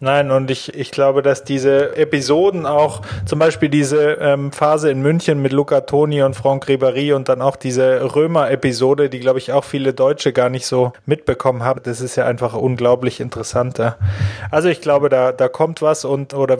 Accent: German